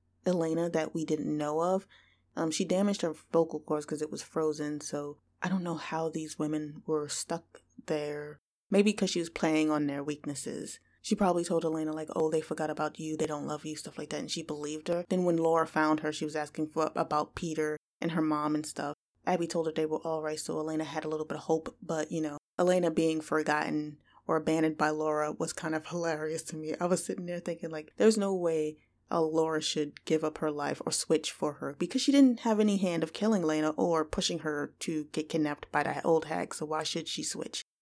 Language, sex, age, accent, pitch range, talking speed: English, female, 20-39, American, 155-175 Hz, 230 wpm